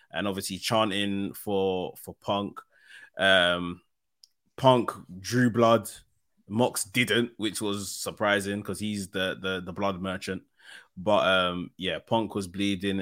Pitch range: 90-105 Hz